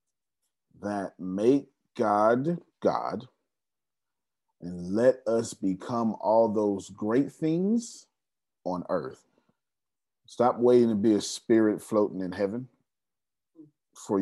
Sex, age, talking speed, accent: male, 40-59, 100 wpm, American